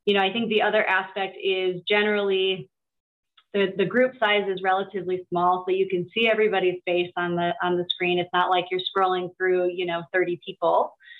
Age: 30-49